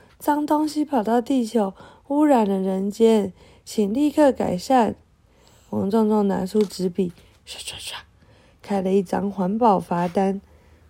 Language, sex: Chinese, female